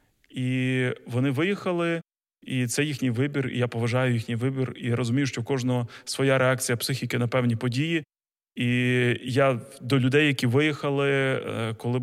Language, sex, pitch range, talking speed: Ukrainian, male, 125-165 Hz, 150 wpm